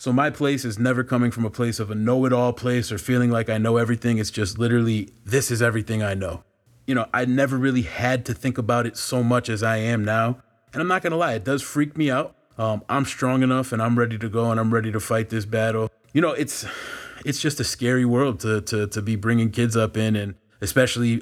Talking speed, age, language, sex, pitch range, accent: 250 wpm, 30-49, English, male, 110-125 Hz, American